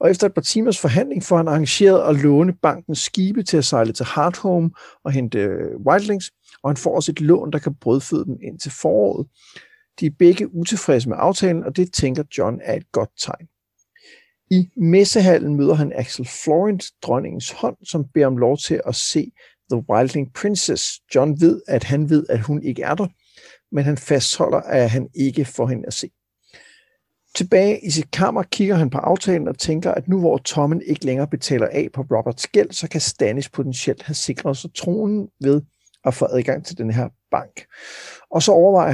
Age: 60-79